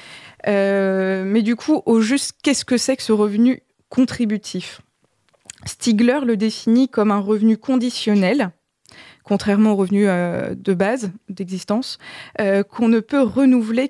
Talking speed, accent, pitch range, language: 135 wpm, French, 195-235 Hz, French